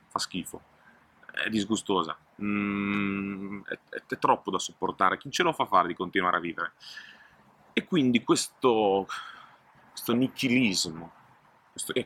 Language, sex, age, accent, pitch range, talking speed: Italian, male, 30-49, native, 90-115 Hz, 125 wpm